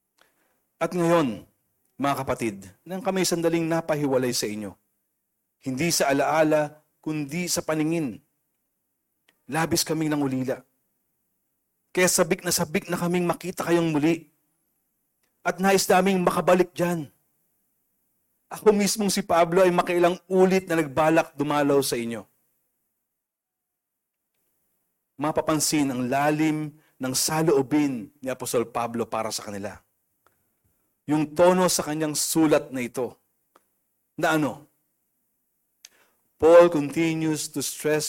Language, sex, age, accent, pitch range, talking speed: Filipino, male, 40-59, native, 130-170 Hz, 110 wpm